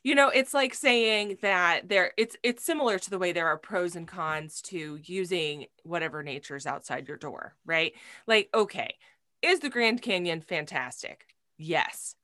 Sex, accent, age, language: female, American, 20-39, English